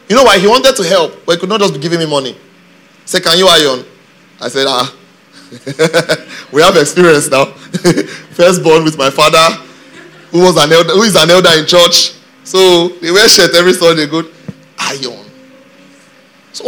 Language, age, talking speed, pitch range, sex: English, 30-49, 185 wpm, 170-235 Hz, male